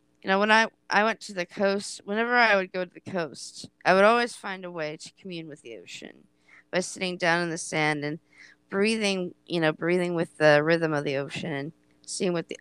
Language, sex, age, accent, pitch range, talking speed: English, female, 20-39, American, 140-205 Hz, 230 wpm